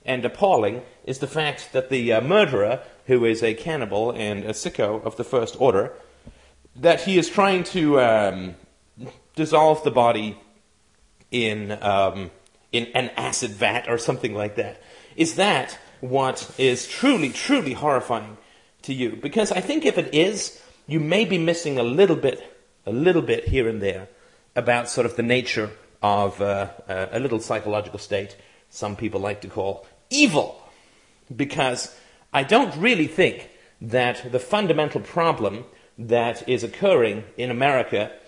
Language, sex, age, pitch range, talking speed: English, male, 30-49, 110-155 Hz, 155 wpm